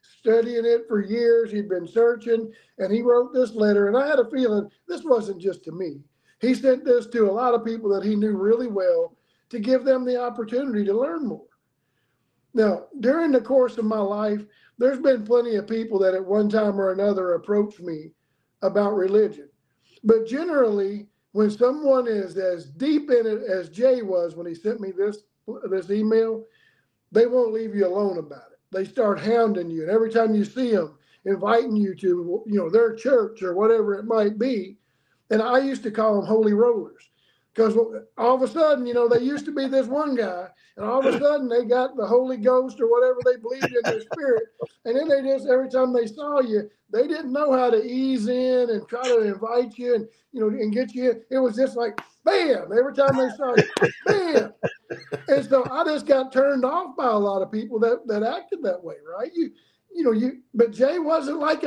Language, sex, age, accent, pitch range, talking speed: English, male, 50-69, American, 210-265 Hz, 210 wpm